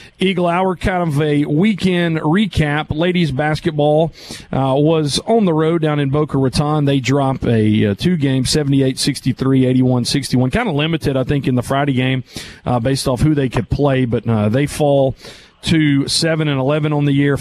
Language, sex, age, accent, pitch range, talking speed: English, male, 40-59, American, 125-150 Hz, 185 wpm